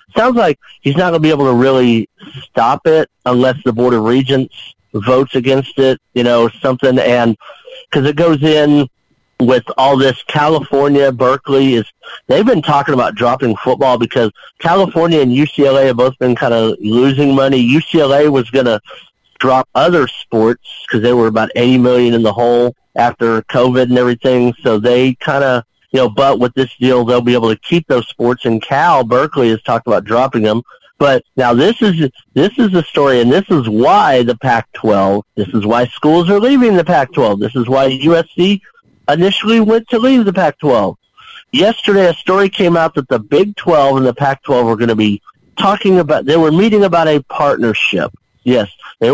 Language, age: English, 50-69